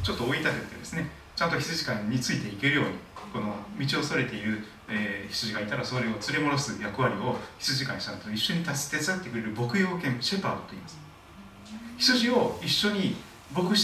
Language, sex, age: Japanese, male, 40-59